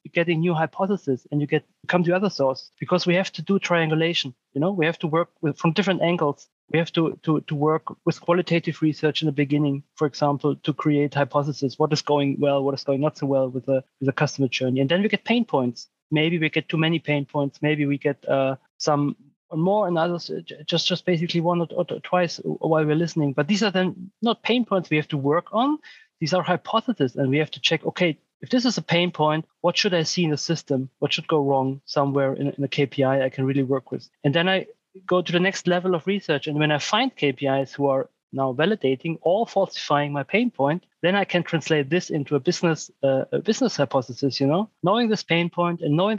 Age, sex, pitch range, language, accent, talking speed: 30-49, male, 145-175 Hz, English, German, 235 wpm